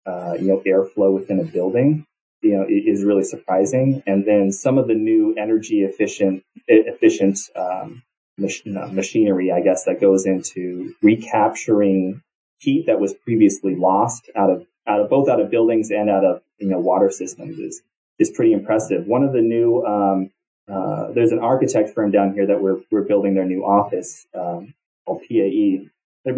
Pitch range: 95-120 Hz